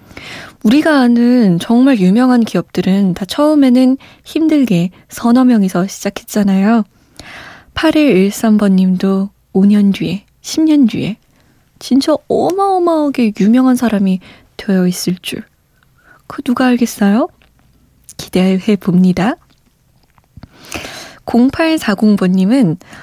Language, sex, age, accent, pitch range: Korean, female, 20-39, native, 190-255 Hz